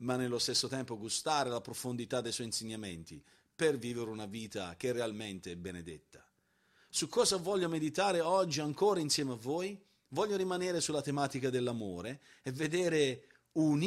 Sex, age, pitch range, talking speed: male, 40-59, 125-175 Hz, 155 wpm